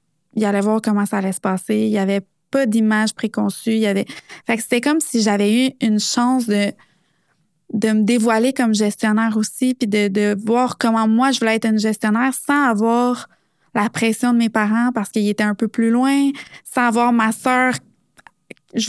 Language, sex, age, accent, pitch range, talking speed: English, female, 20-39, Canadian, 215-245 Hz, 195 wpm